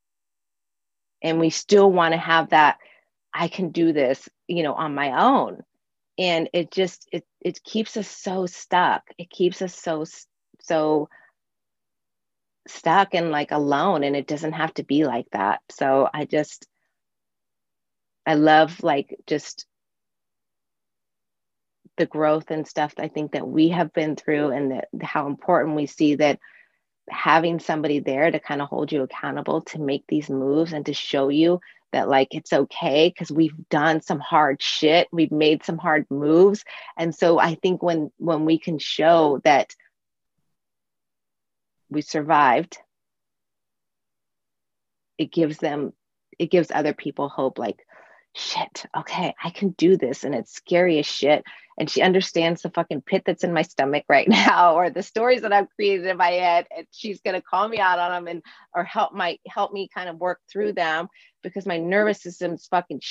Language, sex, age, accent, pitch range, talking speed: English, female, 30-49, American, 150-180 Hz, 165 wpm